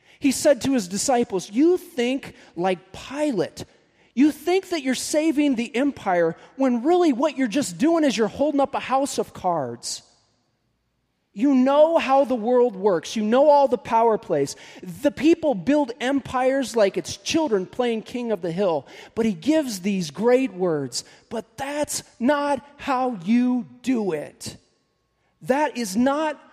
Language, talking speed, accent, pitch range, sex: English, 160 wpm, American, 165-255 Hz, male